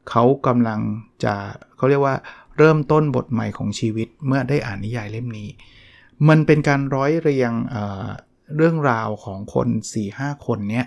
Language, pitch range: Thai, 115-140 Hz